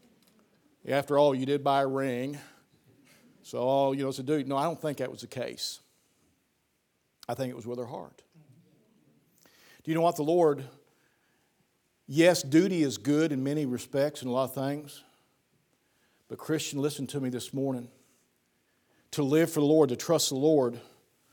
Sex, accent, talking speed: male, American, 175 wpm